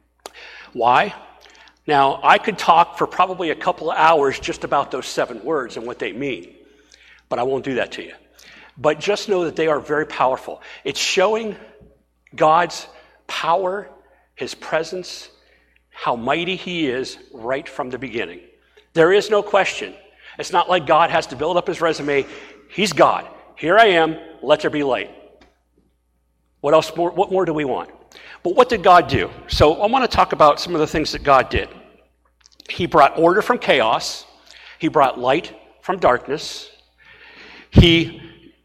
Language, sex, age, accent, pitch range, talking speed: English, male, 50-69, American, 145-195 Hz, 170 wpm